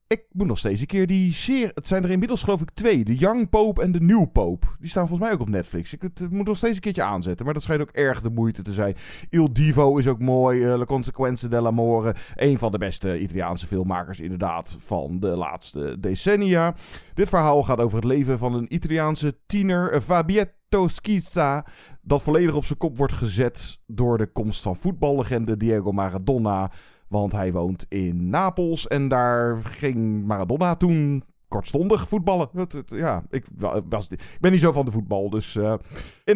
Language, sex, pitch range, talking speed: Dutch, male, 110-165 Hz, 195 wpm